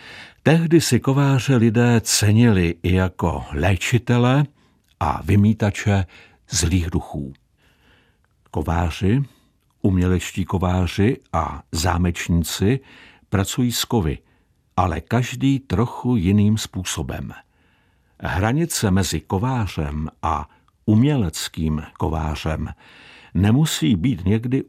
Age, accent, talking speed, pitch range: 60-79, native, 85 wpm, 90-120 Hz